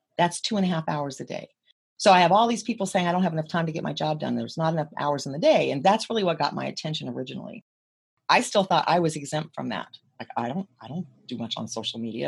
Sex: female